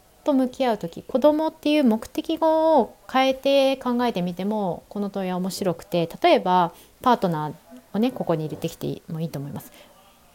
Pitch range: 165-220 Hz